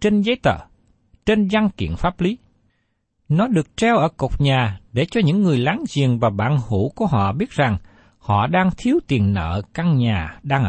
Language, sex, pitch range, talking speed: Vietnamese, male, 110-185 Hz, 195 wpm